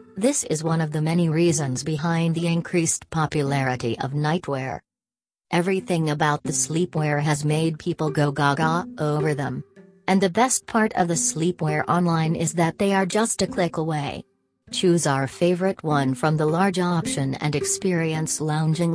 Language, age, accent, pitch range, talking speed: English, 40-59, American, 145-180 Hz, 160 wpm